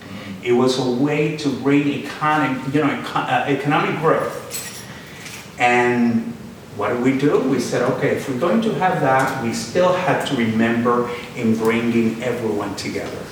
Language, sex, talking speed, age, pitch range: English, male, 160 wpm, 50-69, 125-155 Hz